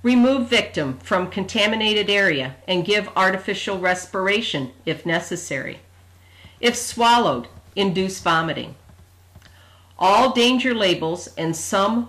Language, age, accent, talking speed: English, 50-69, American, 100 wpm